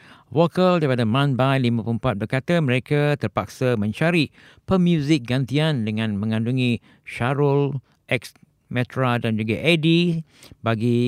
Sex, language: male, Japanese